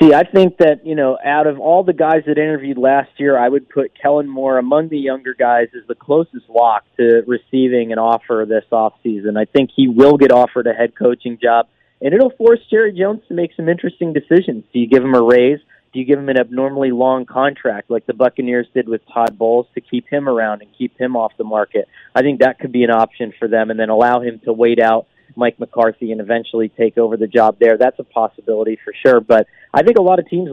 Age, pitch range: 30-49, 115-145 Hz